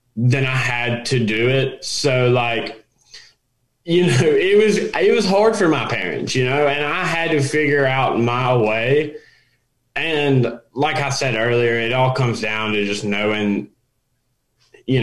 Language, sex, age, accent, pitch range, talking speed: English, male, 20-39, American, 115-140 Hz, 165 wpm